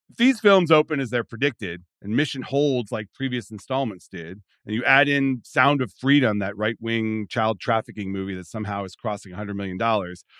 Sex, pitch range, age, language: male, 100-145 Hz, 40-59, English